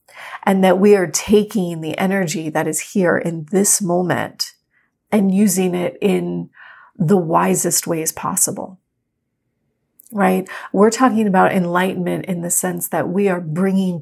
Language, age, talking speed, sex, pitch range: English, 30-49, 140 wpm, female, 175-205 Hz